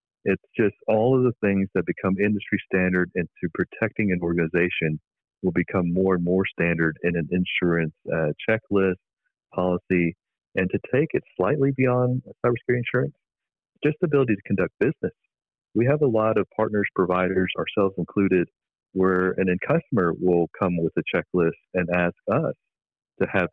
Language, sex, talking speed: English, male, 160 wpm